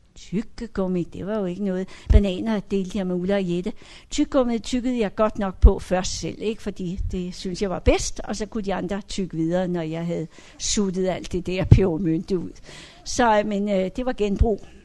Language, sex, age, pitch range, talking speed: Danish, female, 60-79, 175-250 Hz, 200 wpm